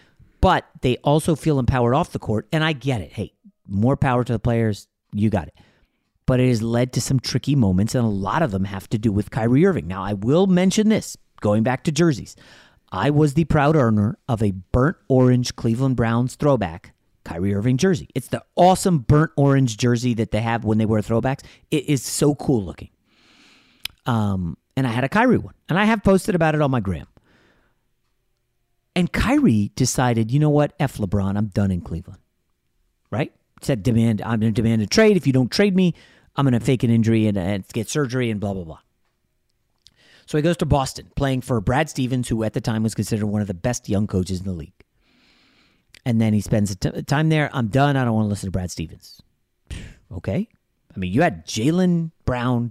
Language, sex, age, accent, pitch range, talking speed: English, male, 30-49, American, 105-140 Hz, 210 wpm